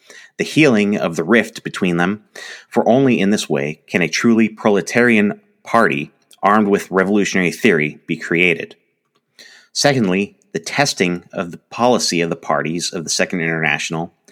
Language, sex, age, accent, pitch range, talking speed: English, male, 30-49, American, 85-115 Hz, 150 wpm